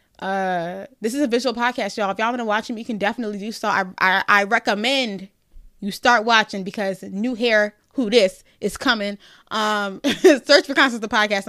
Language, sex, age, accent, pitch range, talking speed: English, female, 20-39, American, 190-225 Hz, 200 wpm